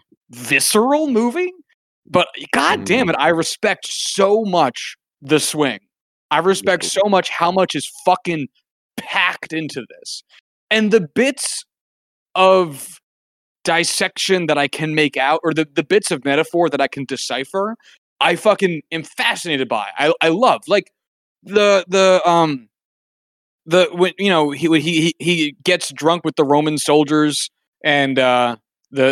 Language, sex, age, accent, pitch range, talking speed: English, male, 20-39, American, 140-180 Hz, 150 wpm